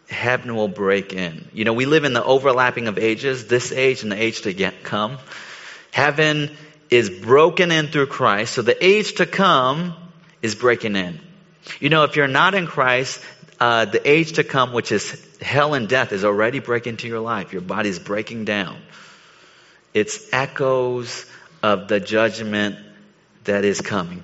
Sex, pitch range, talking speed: male, 110-145 Hz, 175 wpm